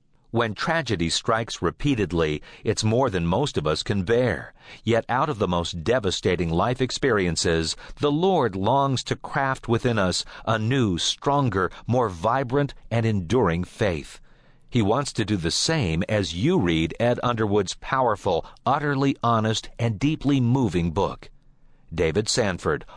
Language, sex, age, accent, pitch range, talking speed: English, male, 50-69, American, 90-125 Hz, 145 wpm